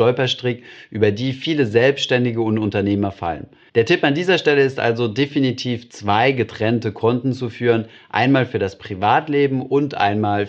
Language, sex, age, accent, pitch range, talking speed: German, male, 30-49, German, 105-130 Hz, 155 wpm